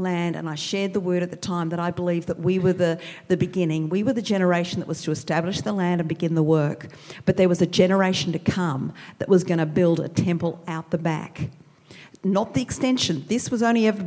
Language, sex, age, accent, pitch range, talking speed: English, female, 50-69, Australian, 160-185 Hz, 240 wpm